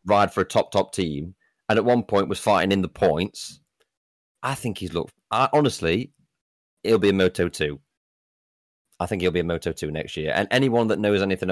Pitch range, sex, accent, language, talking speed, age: 80-100 Hz, male, British, English, 200 wpm, 30-49